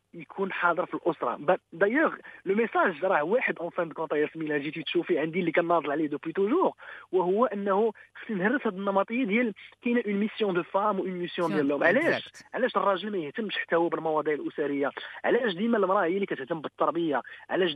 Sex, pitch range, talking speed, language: male, 165-215 Hz, 170 wpm, English